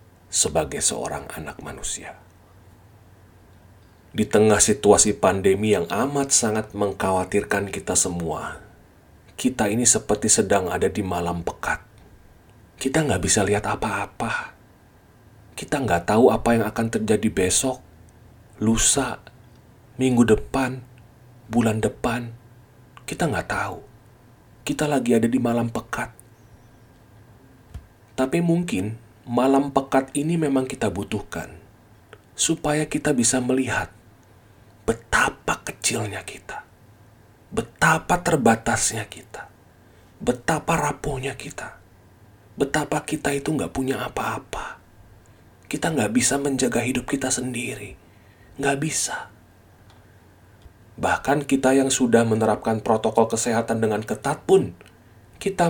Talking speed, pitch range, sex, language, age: 105 wpm, 100-130 Hz, male, Indonesian, 40-59